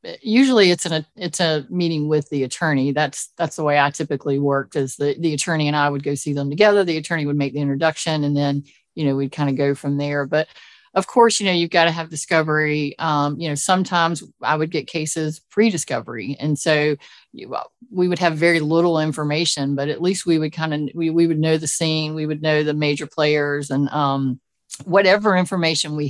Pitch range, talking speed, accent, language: 145-175 Hz, 220 wpm, American, English